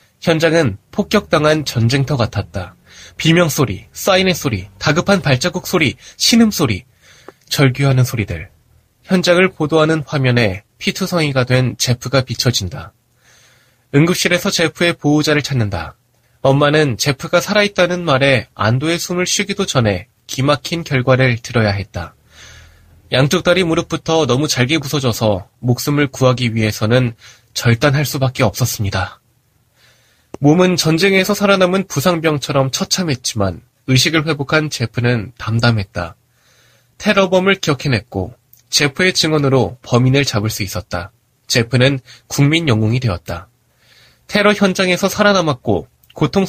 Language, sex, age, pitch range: Korean, male, 20-39, 120-165 Hz